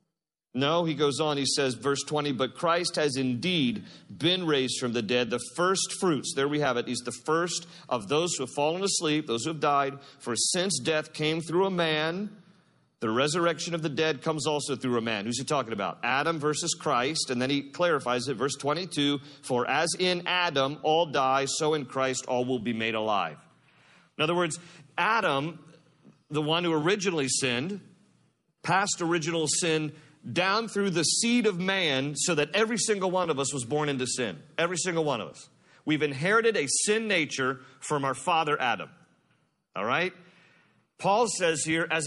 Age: 40-59